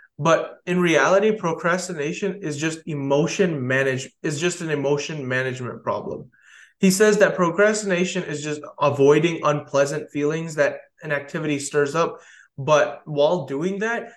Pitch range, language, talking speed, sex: 135-170 Hz, English, 135 wpm, male